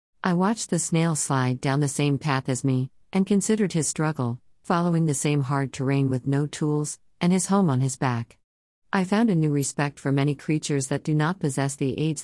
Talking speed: 210 wpm